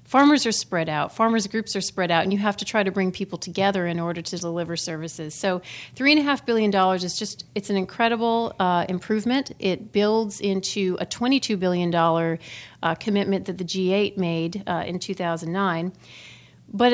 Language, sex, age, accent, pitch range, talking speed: English, female, 40-59, American, 175-215 Hz, 175 wpm